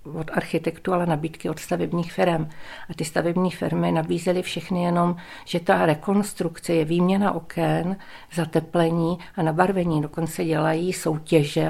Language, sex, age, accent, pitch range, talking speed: Czech, female, 50-69, native, 165-185 Hz, 135 wpm